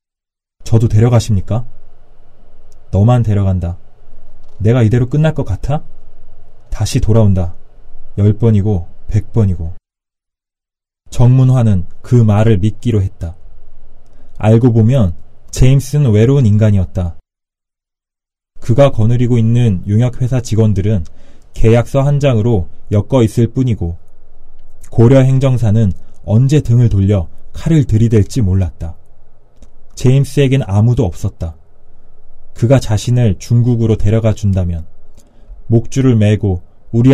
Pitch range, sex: 95-120 Hz, male